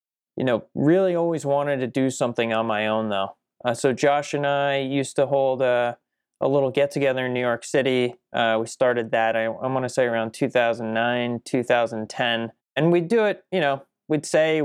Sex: male